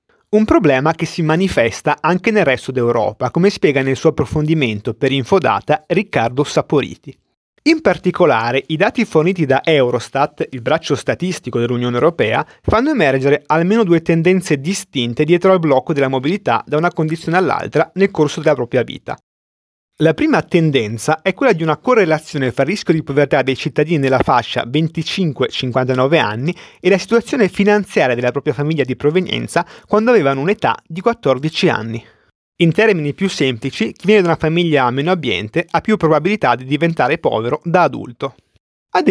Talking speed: 160 wpm